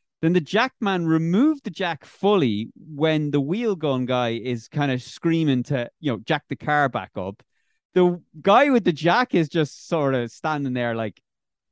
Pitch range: 115-155 Hz